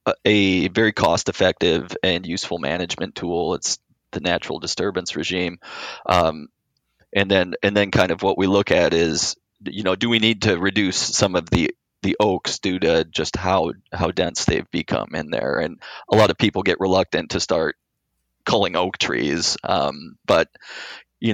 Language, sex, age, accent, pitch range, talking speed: English, male, 20-39, American, 90-115 Hz, 170 wpm